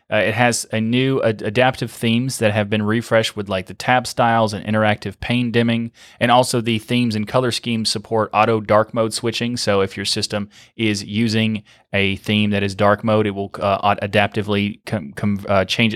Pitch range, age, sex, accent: 105-120 Hz, 20-39, male, American